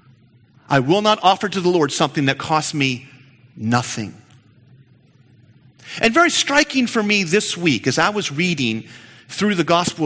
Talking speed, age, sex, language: 155 wpm, 40-59, male, English